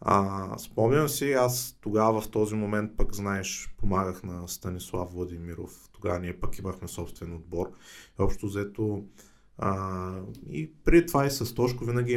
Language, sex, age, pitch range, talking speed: Bulgarian, male, 20-39, 95-115 Hz, 150 wpm